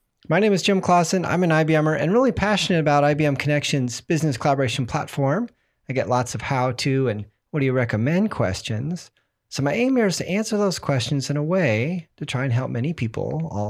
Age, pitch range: 40-59, 125-170 Hz